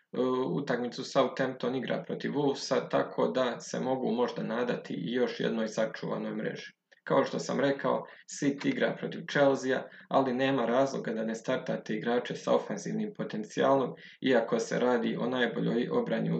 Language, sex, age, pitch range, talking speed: Croatian, male, 20-39, 120-145 Hz, 145 wpm